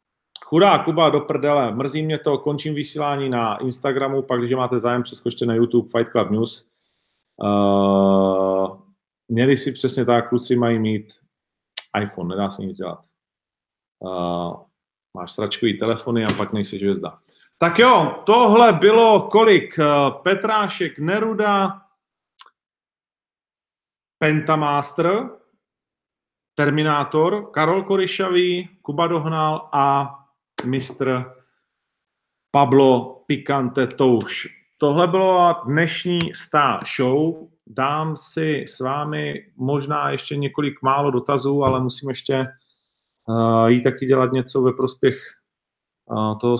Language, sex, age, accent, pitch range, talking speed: Czech, male, 40-59, native, 120-155 Hz, 110 wpm